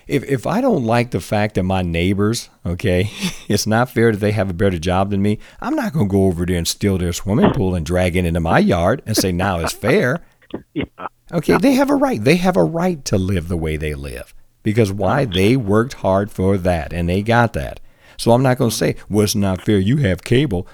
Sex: male